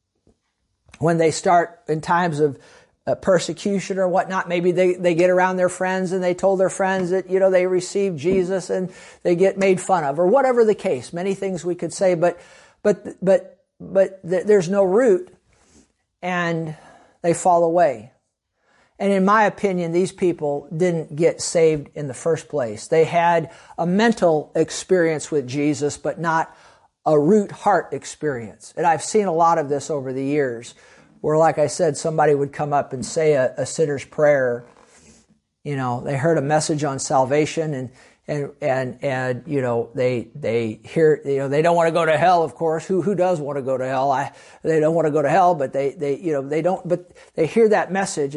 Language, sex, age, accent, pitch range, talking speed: English, male, 50-69, American, 145-185 Hz, 195 wpm